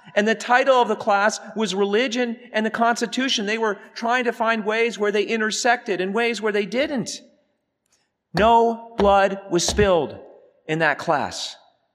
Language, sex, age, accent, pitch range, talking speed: English, male, 40-59, American, 135-215 Hz, 160 wpm